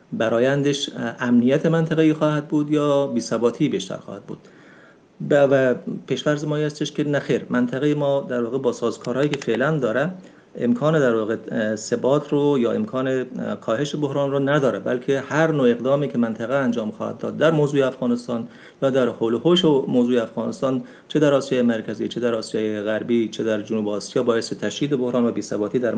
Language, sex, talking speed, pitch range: Persian, male, 175 wpm, 115-150 Hz